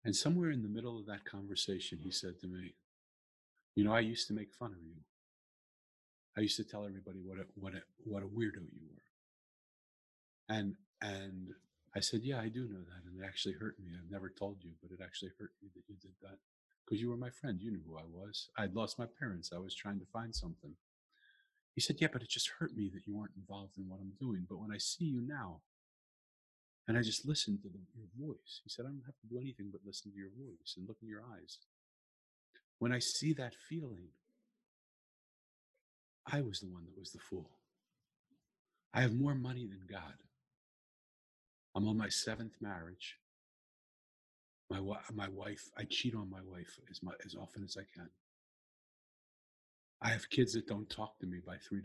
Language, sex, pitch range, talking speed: English, male, 95-120 Hz, 205 wpm